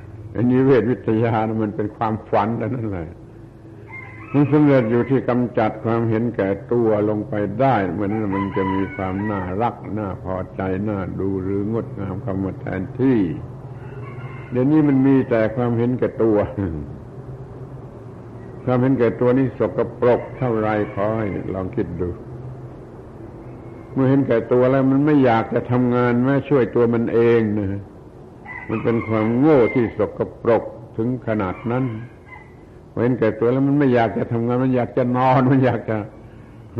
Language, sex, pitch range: Thai, male, 100-125 Hz